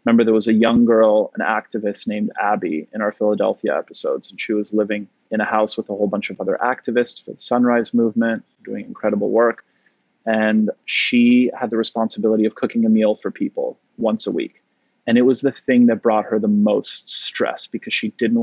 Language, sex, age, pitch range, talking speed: English, male, 20-39, 105-120 Hz, 205 wpm